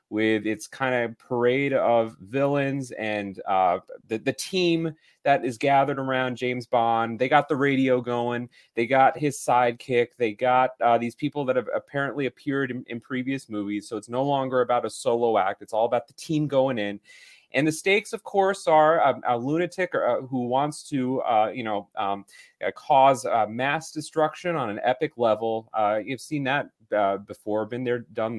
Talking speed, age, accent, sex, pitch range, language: 185 wpm, 30-49, American, male, 120-160 Hz, English